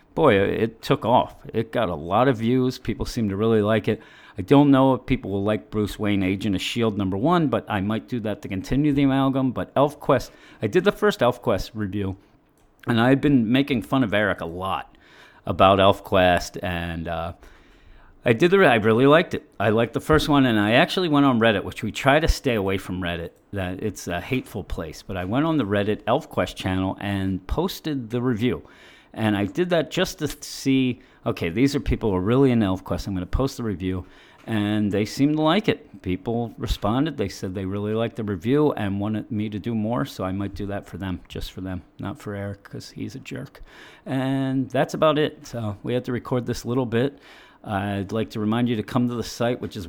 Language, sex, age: English, male, 40-59